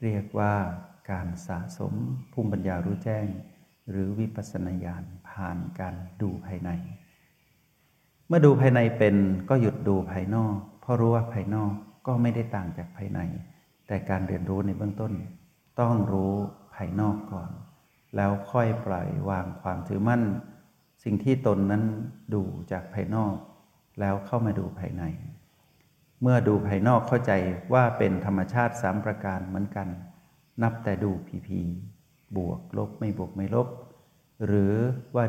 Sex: male